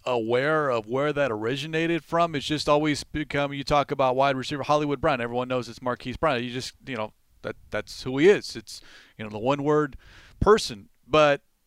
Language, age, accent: English, 40-59, American